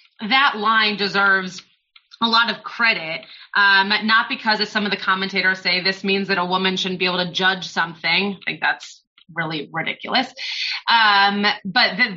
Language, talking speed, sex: English, 175 wpm, female